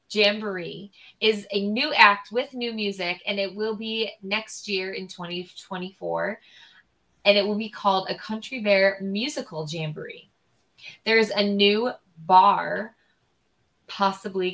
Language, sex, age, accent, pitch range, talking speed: English, female, 20-39, American, 180-215 Hz, 130 wpm